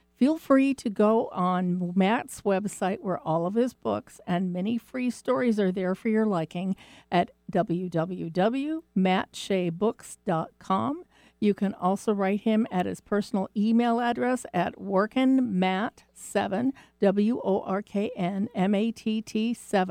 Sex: female